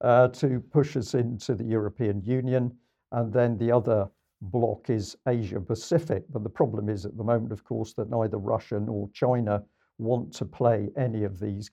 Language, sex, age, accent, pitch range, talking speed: English, male, 50-69, British, 110-130 Hz, 185 wpm